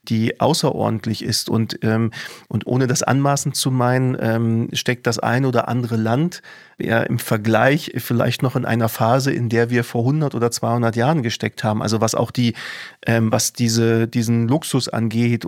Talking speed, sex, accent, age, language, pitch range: 175 wpm, male, German, 40-59, German, 115-130 Hz